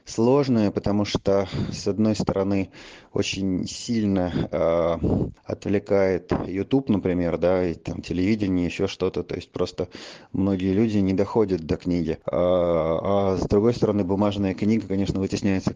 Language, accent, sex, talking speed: Russian, native, male, 135 wpm